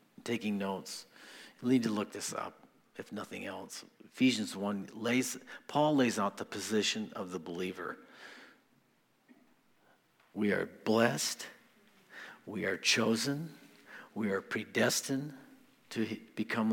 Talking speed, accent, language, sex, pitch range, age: 120 wpm, American, English, male, 110-150 Hz, 50-69